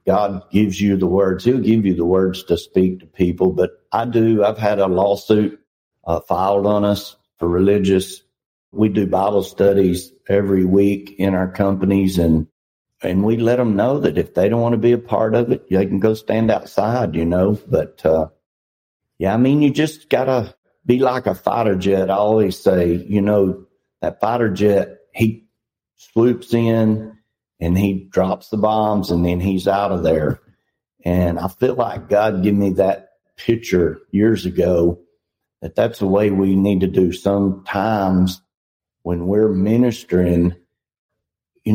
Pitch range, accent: 95-110 Hz, American